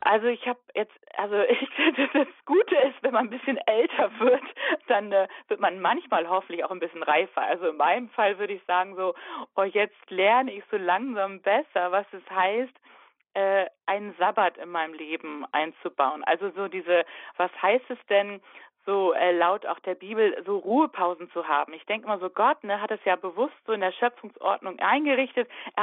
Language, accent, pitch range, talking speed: German, German, 195-250 Hz, 195 wpm